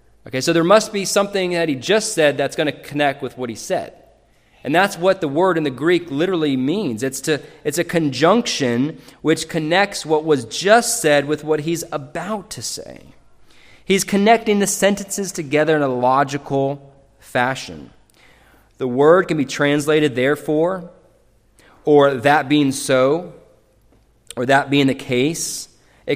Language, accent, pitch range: English, American, 135-185 Hz